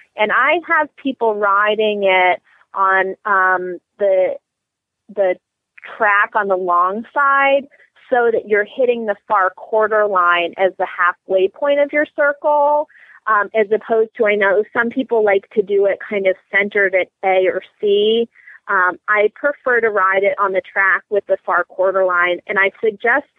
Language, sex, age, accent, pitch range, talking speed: English, female, 30-49, American, 190-230 Hz, 170 wpm